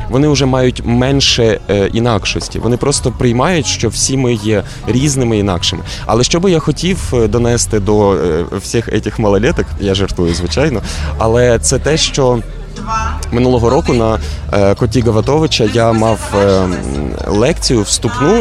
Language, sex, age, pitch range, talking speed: Ukrainian, male, 20-39, 110-135 Hz, 135 wpm